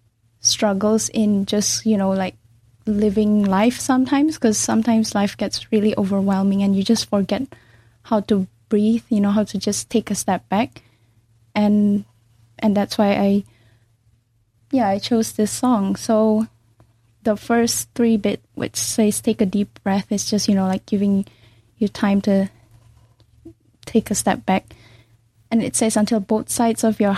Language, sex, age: Korean, female, 10-29